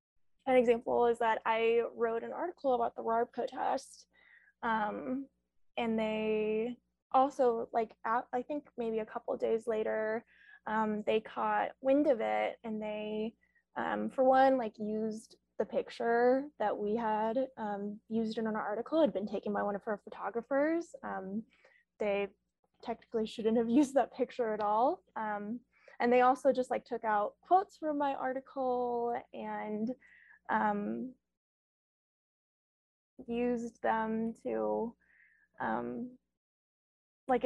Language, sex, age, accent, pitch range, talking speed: English, female, 10-29, American, 215-255 Hz, 140 wpm